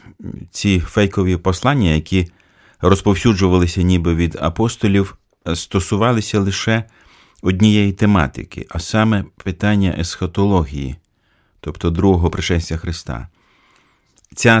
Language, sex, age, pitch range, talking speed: Ukrainian, male, 30-49, 85-105 Hz, 85 wpm